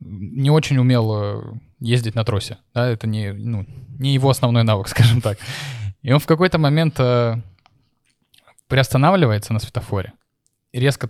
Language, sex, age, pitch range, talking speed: Russian, male, 20-39, 115-145 Hz, 140 wpm